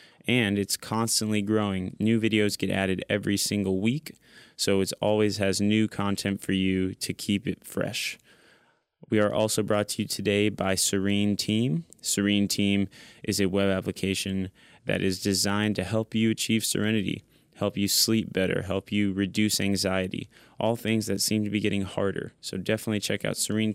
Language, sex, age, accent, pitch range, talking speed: English, male, 20-39, American, 100-110 Hz, 170 wpm